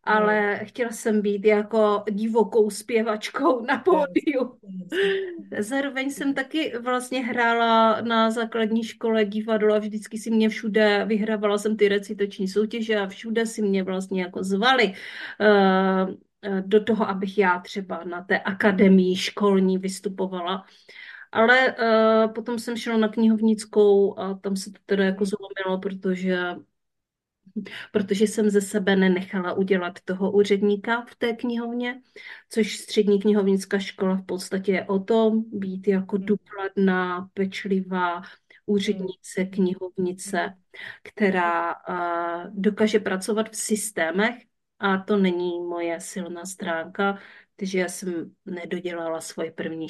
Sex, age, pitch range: female, 30-49, 190-220 Hz